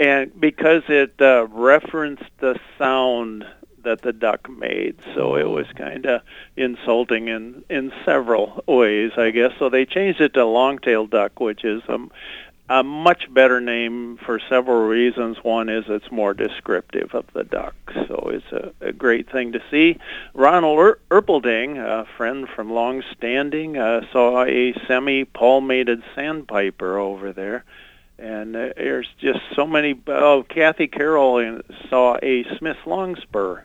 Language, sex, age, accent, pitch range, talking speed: English, male, 50-69, American, 115-145 Hz, 150 wpm